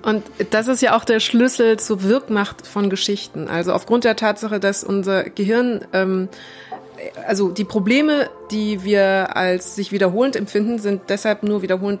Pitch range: 185-210 Hz